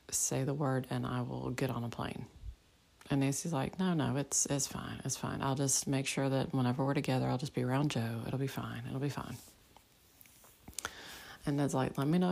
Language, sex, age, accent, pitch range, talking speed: English, female, 30-49, American, 125-145 Hz, 220 wpm